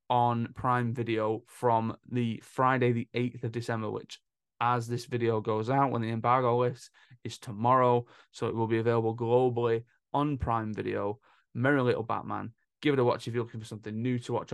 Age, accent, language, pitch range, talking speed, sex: 20-39, British, English, 110-125 Hz, 190 wpm, male